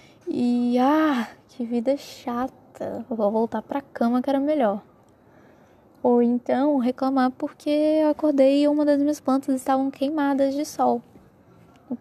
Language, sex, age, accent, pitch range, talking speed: Portuguese, female, 10-29, Brazilian, 215-285 Hz, 140 wpm